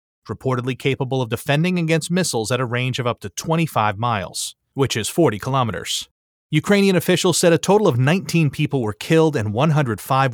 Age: 30-49